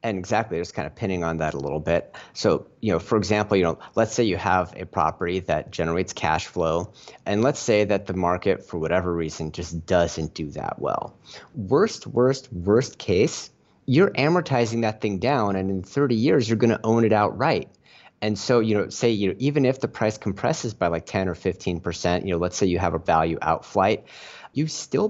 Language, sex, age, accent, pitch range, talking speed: English, male, 30-49, American, 90-120 Hz, 215 wpm